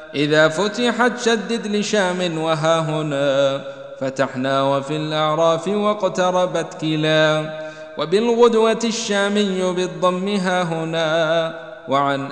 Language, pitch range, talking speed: Arabic, 155-190 Hz, 85 wpm